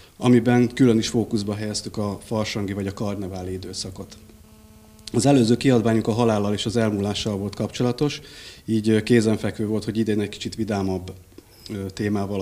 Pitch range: 100-115 Hz